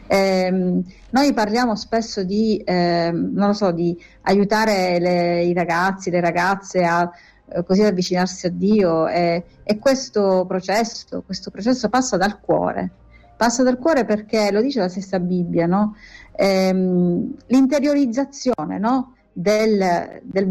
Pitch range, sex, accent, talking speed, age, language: 185-245 Hz, female, native, 135 wpm, 40-59, Italian